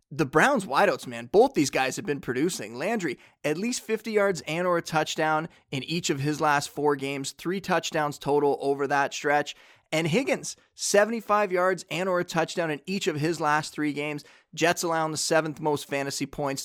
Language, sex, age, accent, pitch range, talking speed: English, male, 20-39, American, 135-165 Hz, 195 wpm